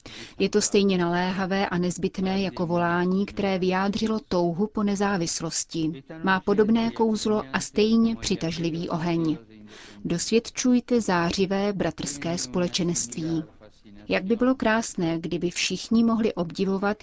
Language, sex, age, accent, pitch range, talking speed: Czech, female, 30-49, native, 170-210 Hz, 115 wpm